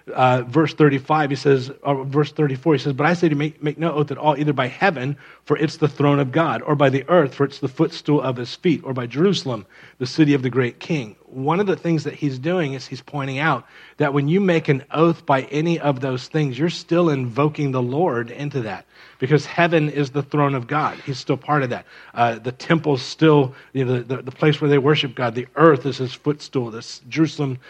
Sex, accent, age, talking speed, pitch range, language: male, American, 40-59, 240 wpm, 135-160 Hz, English